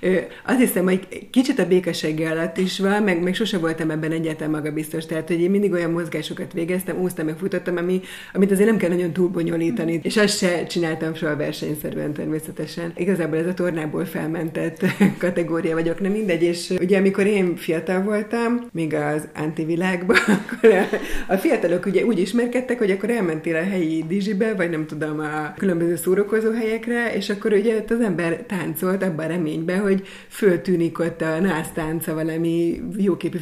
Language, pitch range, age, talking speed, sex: Hungarian, 165-195 Hz, 30-49, 165 wpm, female